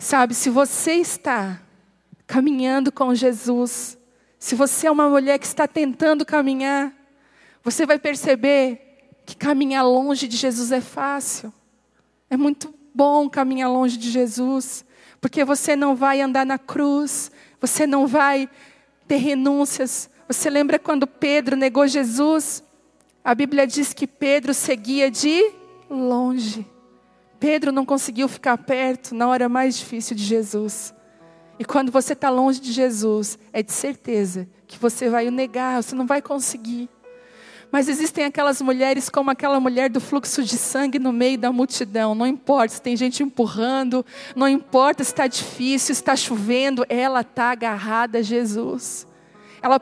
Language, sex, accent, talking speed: Portuguese, female, Brazilian, 150 wpm